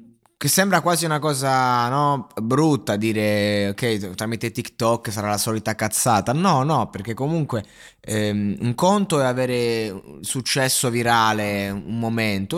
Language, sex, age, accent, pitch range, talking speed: Italian, male, 20-39, native, 110-150 Hz, 130 wpm